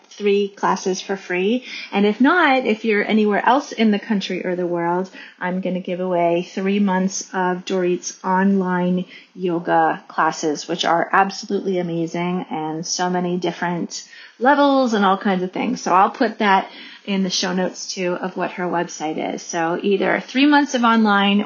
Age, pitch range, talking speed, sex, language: 30-49, 180-230 Hz, 175 wpm, female, English